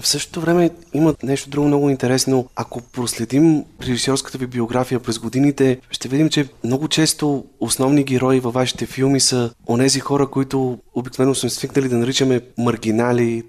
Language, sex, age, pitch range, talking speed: Bulgarian, male, 30-49, 115-130 Hz, 155 wpm